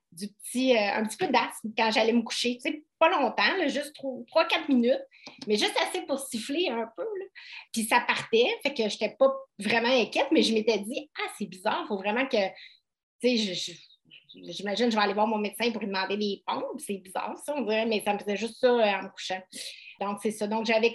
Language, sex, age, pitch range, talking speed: English, female, 30-49, 190-235 Hz, 245 wpm